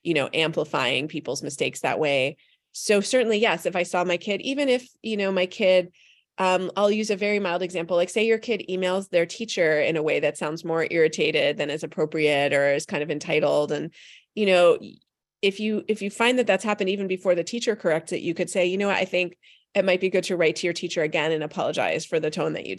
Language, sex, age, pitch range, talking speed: English, female, 30-49, 170-215 Hz, 240 wpm